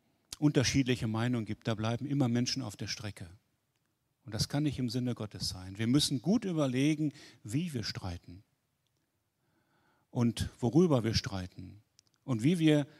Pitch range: 115-155 Hz